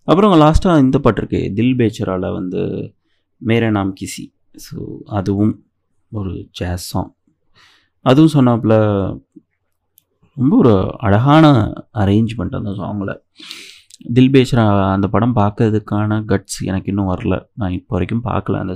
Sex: male